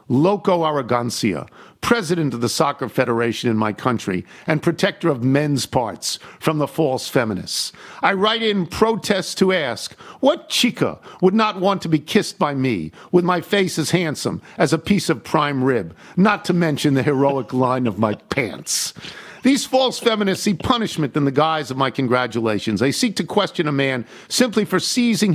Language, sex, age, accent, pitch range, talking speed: English, male, 50-69, American, 135-195 Hz, 180 wpm